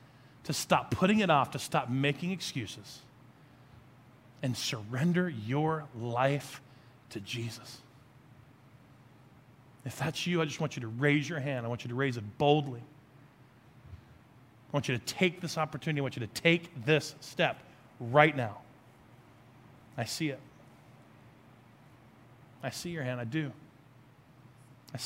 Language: English